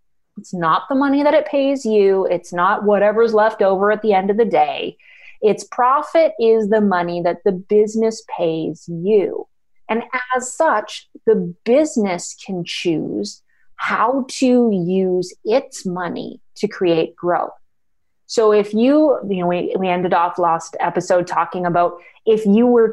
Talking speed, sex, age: 155 wpm, female, 30-49